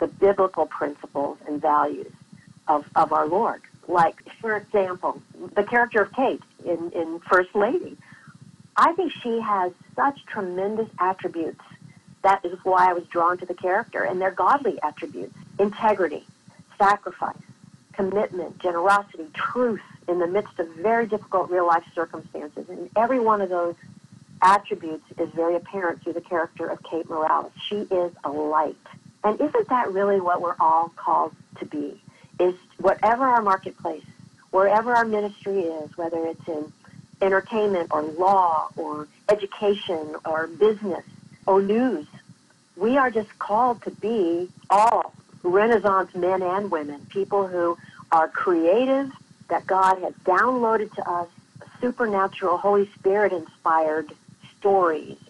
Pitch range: 170-200 Hz